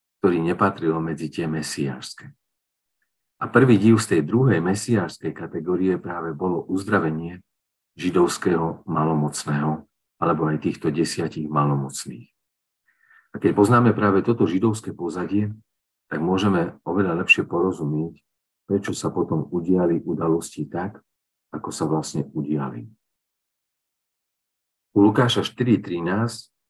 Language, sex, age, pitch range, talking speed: Slovak, male, 50-69, 80-100 Hz, 110 wpm